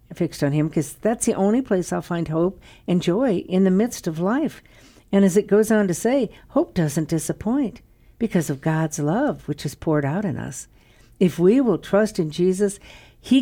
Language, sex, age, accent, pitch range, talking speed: English, female, 60-79, American, 150-200 Hz, 200 wpm